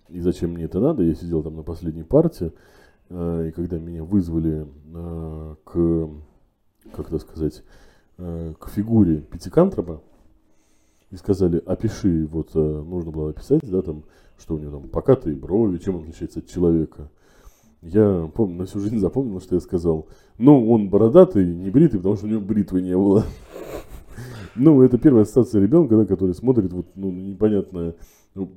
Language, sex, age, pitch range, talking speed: Russian, male, 20-39, 85-100 Hz, 160 wpm